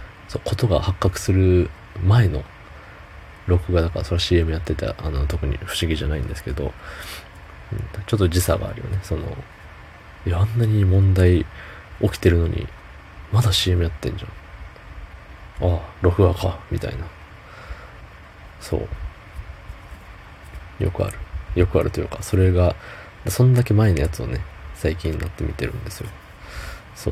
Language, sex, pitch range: Japanese, male, 80-100 Hz